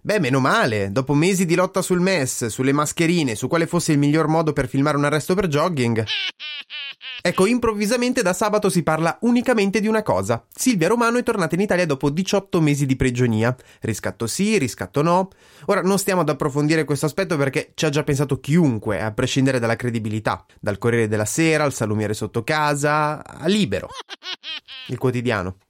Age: 20-39